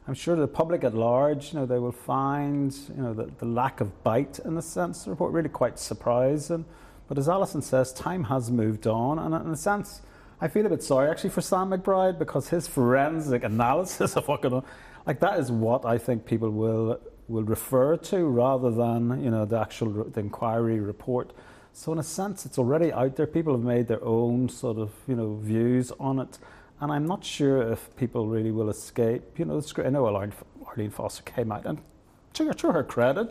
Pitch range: 115-150 Hz